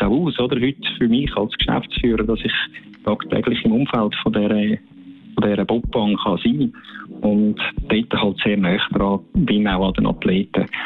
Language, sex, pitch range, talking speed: German, male, 110-135 Hz, 170 wpm